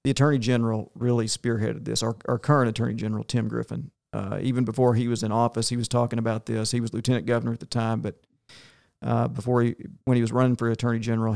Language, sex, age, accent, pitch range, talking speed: English, male, 50-69, American, 115-125 Hz, 225 wpm